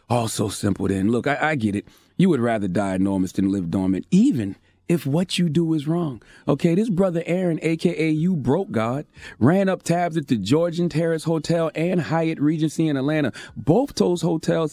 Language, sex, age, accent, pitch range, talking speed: English, male, 30-49, American, 140-180 Hz, 200 wpm